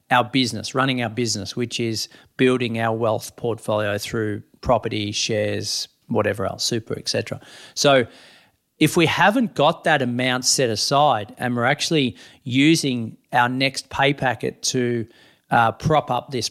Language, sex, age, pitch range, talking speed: English, male, 40-59, 120-140 Hz, 145 wpm